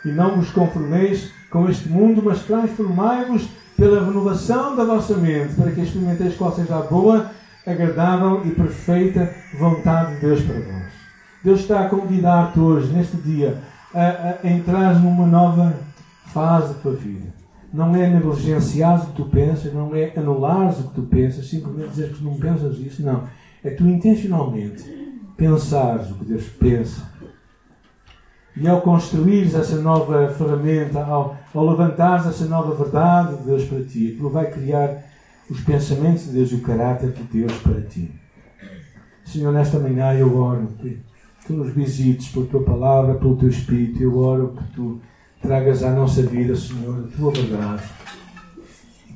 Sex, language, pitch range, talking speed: male, Portuguese, 130-175 Hz, 160 wpm